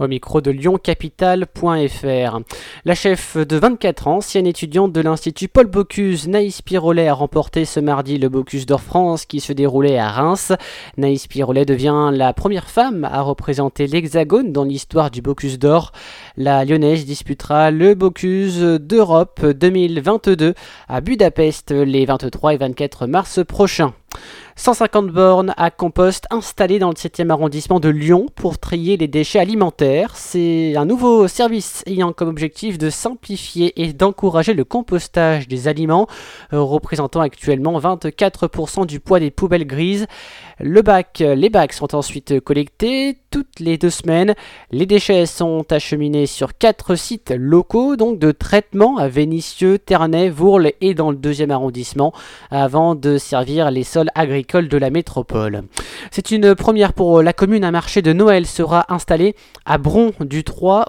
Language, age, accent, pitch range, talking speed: French, 20-39, French, 145-185 Hz, 155 wpm